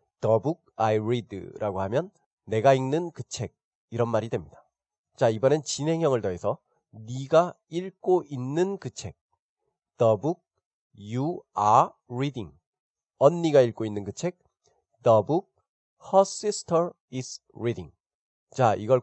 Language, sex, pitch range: Korean, male, 120-170 Hz